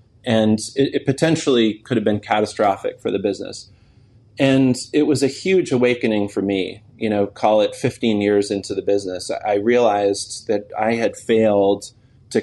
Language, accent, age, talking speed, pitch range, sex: English, American, 30-49, 170 wpm, 100-120 Hz, male